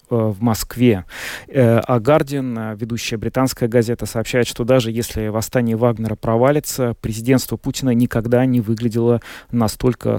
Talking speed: 120 wpm